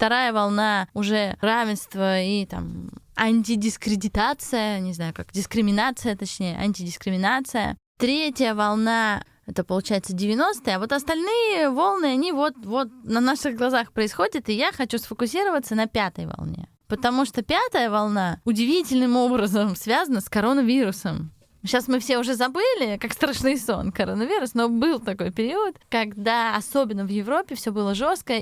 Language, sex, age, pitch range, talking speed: Russian, female, 20-39, 210-265 Hz, 135 wpm